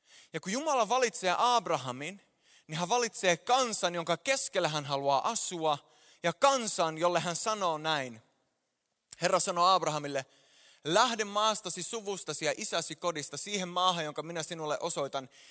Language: Finnish